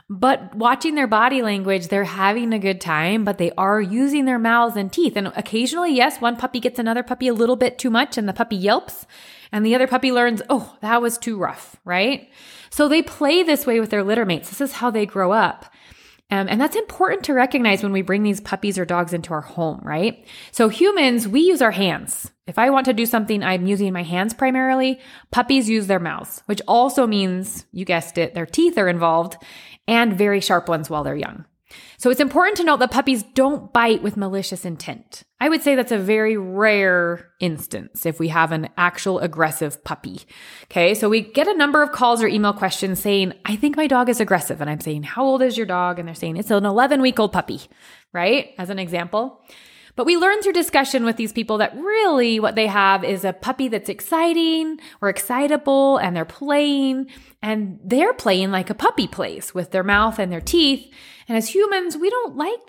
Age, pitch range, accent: 20-39, 190-265 Hz, American